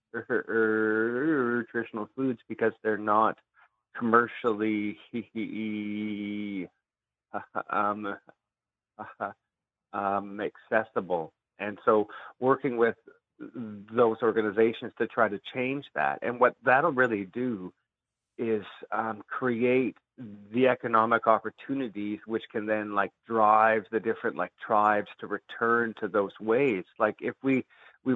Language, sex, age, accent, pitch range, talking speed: English, male, 30-49, American, 105-120 Hz, 105 wpm